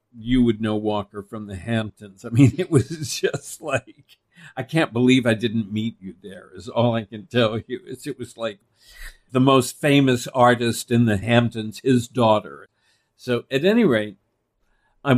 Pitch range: 110-135 Hz